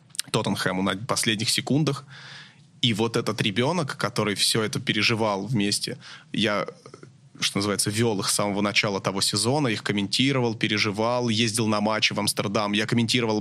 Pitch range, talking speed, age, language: 105-125 Hz, 150 wpm, 20-39, Russian